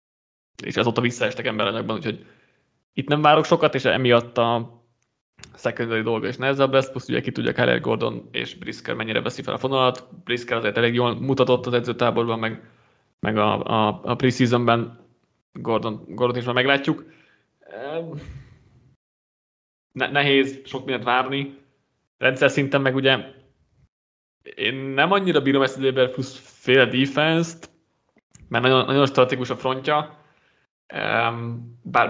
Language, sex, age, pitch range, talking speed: Hungarian, male, 20-39, 115-135 Hz, 135 wpm